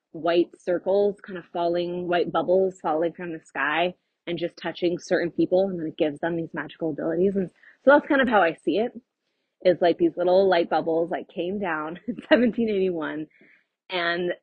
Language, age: English, 20-39